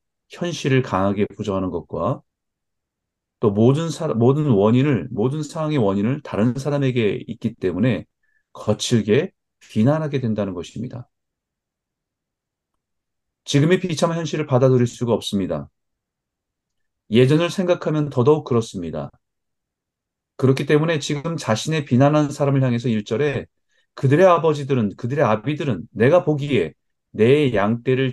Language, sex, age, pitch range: Korean, male, 30-49, 105-145 Hz